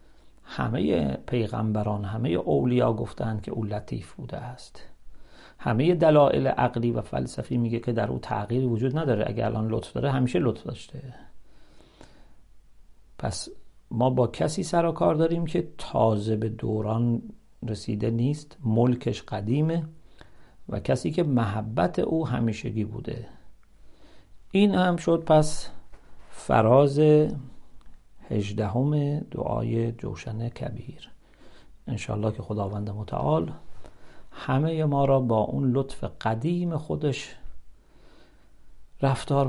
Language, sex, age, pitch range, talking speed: English, male, 50-69, 110-135 Hz, 115 wpm